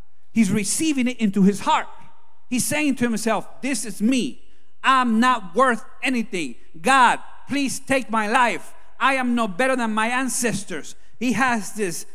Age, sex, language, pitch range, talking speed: 40-59, male, English, 150-225 Hz, 160 wpm